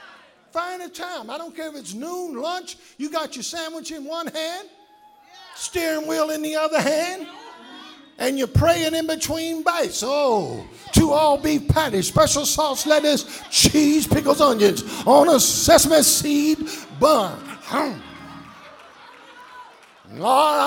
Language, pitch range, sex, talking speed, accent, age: English, 280-335 Hz, male, 135 wpm, American, 50-69